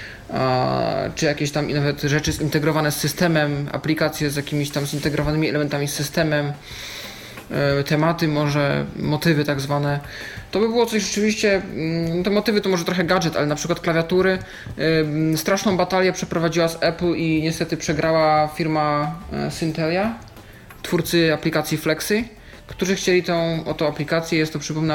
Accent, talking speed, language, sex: native, 135 wpm, Polish, male